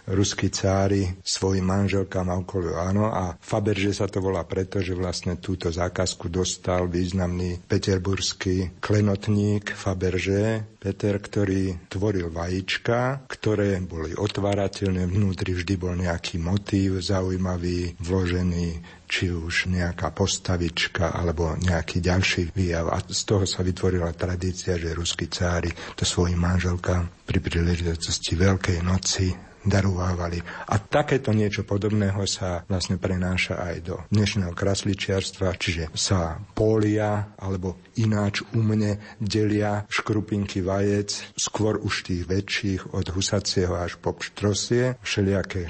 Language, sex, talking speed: Slovak, male, 120 wpm